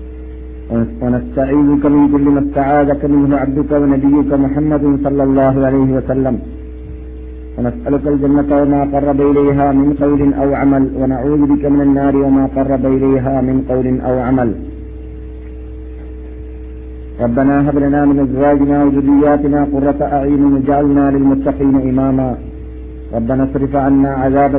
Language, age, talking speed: Malayalam, 50-69, 125 wpm